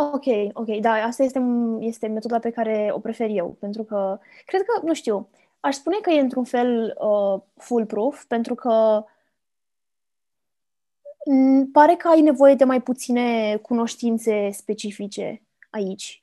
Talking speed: 150 wpm